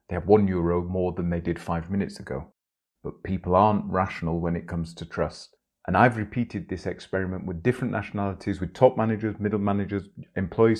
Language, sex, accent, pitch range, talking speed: English, male, British, 90-105 Hz, 190 wpm